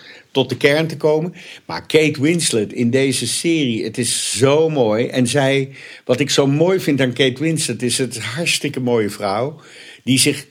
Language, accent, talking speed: Dutch, Dutch, 190 wpm